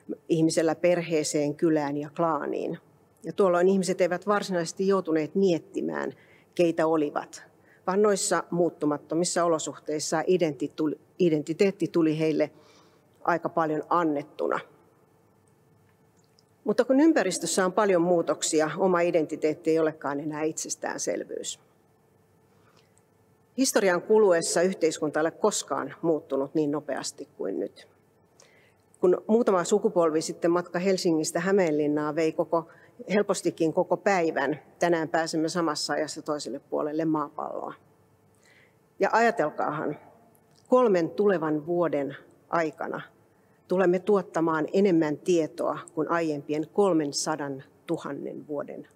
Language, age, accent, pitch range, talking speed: Finnish, 40-59, native, 155-185 Hz, 100 wpm